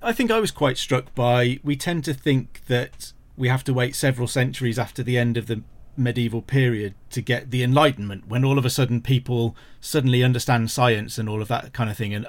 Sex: male